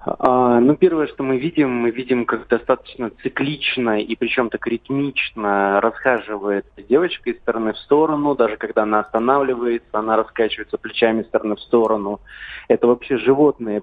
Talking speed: 150 wpm